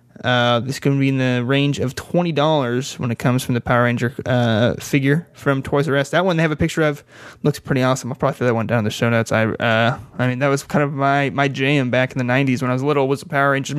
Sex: male